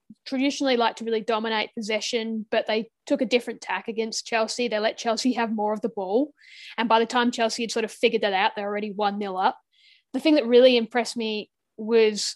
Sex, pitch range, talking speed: female, 210-250 Hz, 220 wpm